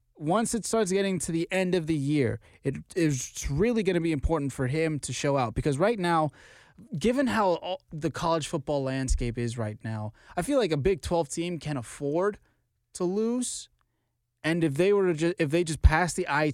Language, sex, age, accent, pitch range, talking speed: English, male, 20-39, American, 125-175 Hz, 205 wpm